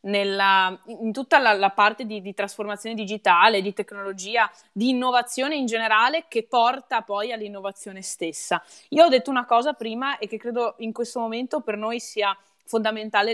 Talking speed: 165 wpm